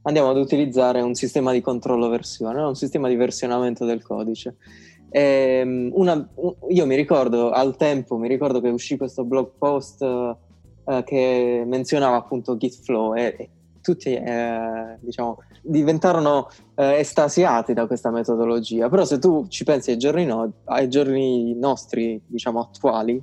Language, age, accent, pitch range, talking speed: Italian, 20-39, native, 115-135 Hz, 145 wpm